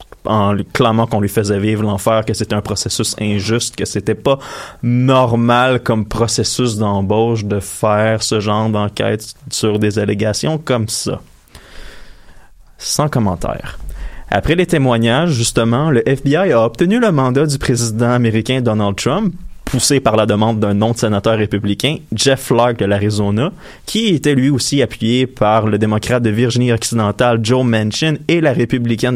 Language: French